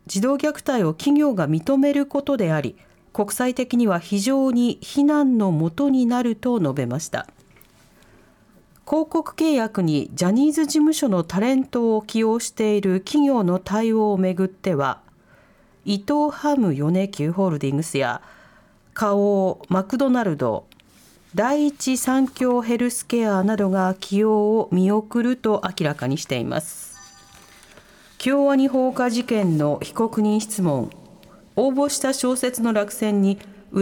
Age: 40-59